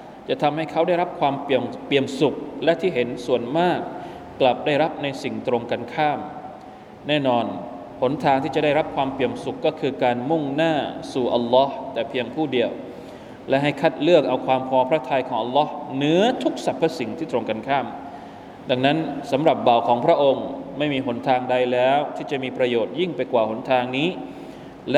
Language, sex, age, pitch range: Thai, male, 20-39, 125-155 Hz